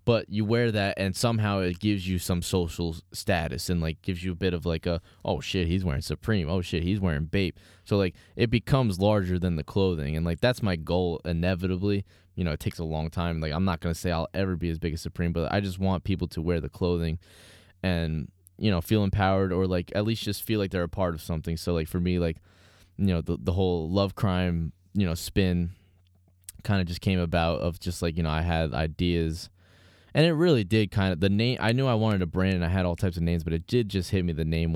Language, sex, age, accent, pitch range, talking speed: English, male, 20-39, American, 80-95 Hz, 255 wpm